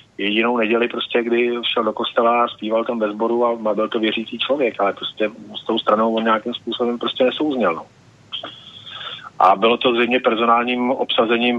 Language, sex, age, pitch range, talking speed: Slovak, male, 30-49, 105-120 Hz, 160 wpm